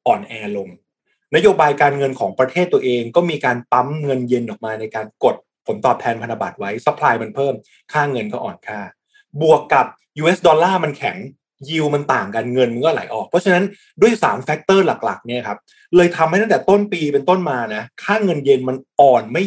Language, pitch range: Thai, 125-180 Hz